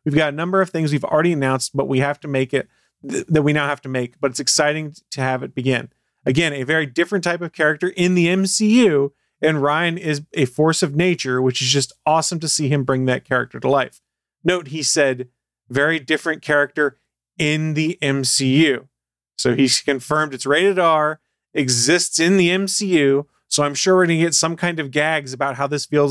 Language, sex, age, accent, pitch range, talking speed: English, male, 30-49, American, 130-160 Hz, 210 wpm